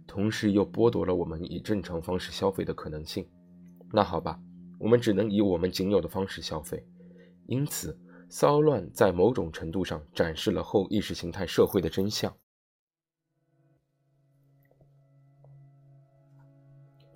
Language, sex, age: Chinese, male, 20-39